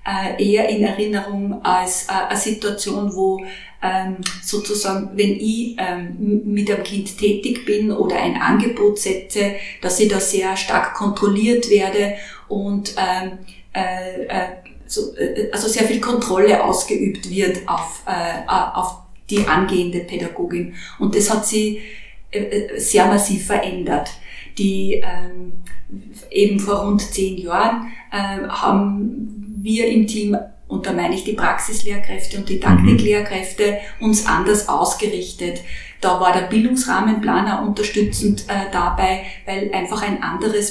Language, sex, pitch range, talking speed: German, female, 190-210 Hz, 135 wpm